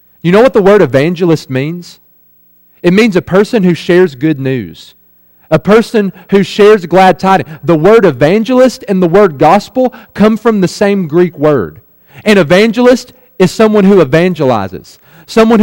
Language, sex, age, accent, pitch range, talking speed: English, male, 40-59, American, 145-195 Hz, 155 wpm